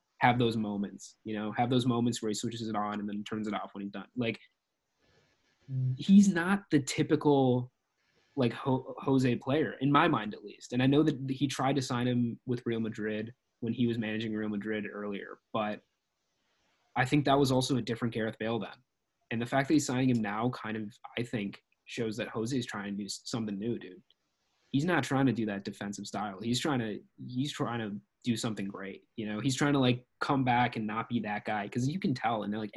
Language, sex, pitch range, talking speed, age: English, male, 110-130 Hz, 225 wpm, 20-39